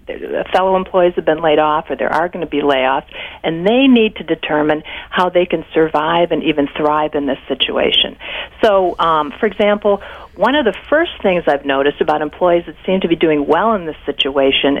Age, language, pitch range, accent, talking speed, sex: 50-69, English, 155-220 Hz, American, 205 wpm, female